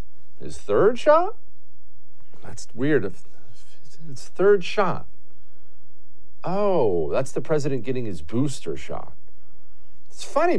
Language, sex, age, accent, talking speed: English, male, 50-69, American, 100 wpm